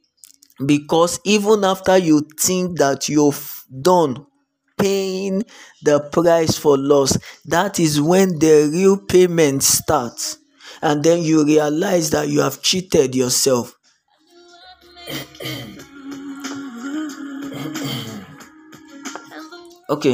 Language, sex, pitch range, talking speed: English, male, 145-195 Hz, 90 wpm